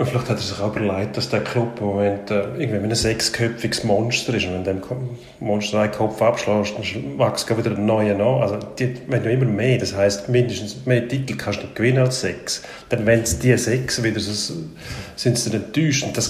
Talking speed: 215 wpm